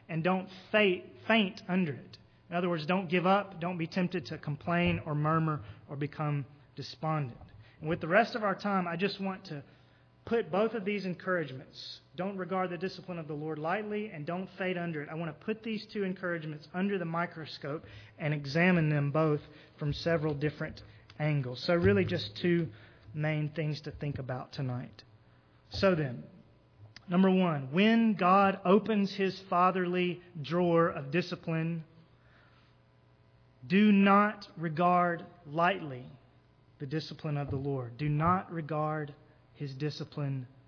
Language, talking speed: English, 155 wpm